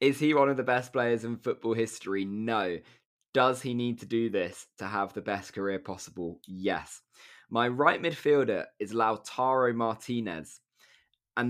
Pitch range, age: 105-125 Hz, 20-39